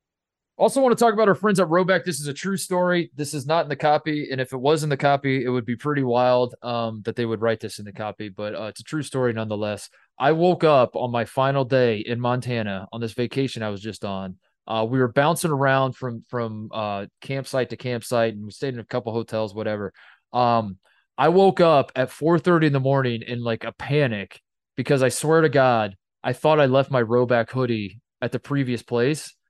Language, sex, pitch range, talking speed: English, male, 115-155 Hz, 230 wpm